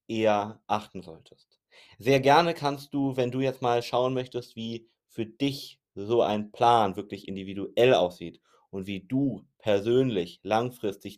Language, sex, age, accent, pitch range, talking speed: German, male, 30-49, German, 105-125 Hz, 145 wpm